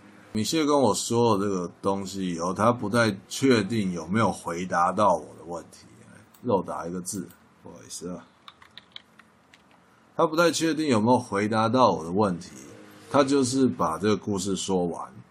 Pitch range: 95-125 Hz